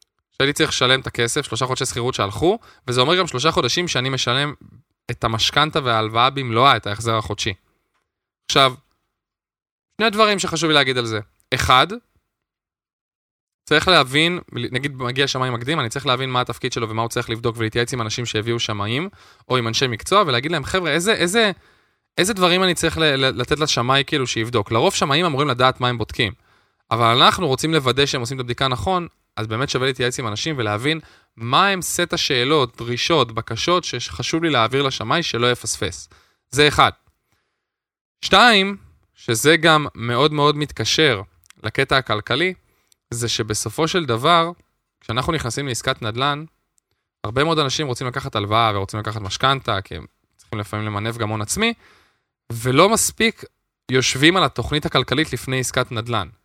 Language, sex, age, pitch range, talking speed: Hebrew, male, 20-39, 115-155 Hz, 140 wpm